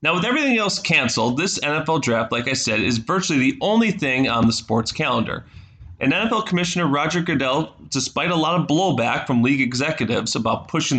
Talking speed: 190 wpm